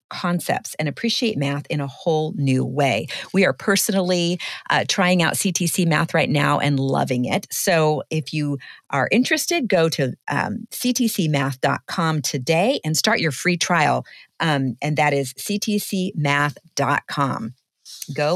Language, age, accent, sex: English, 40-59, American, female